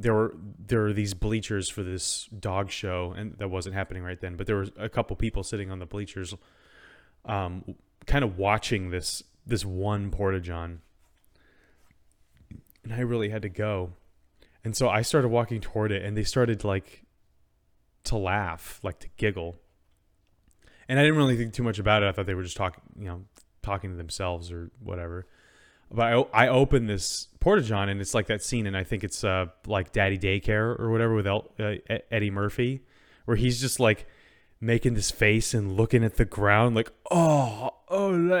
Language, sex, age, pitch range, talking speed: English, male, 20-39, 95-115 Hz, 185 wpm